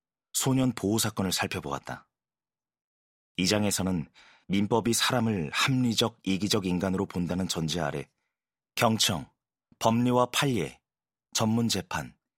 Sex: male